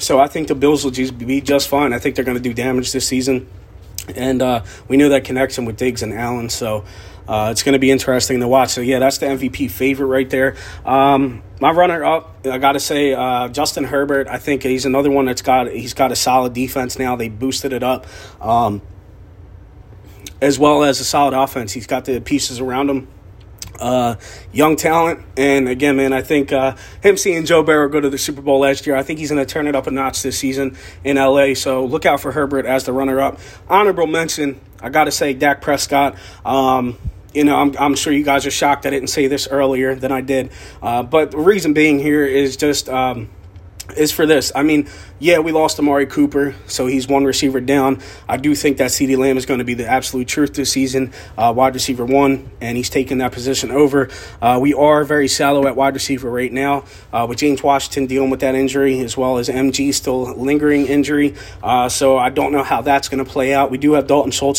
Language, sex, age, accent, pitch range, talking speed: English, male, 30-49, American, 125-140 Hz, 225 wpm